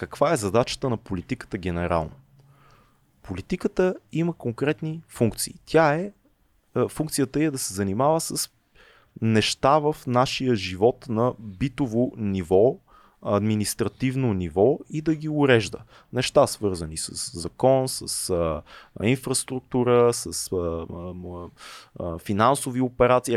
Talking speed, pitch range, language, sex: 105 wpm, 105-140 Hz, Bulgarian, male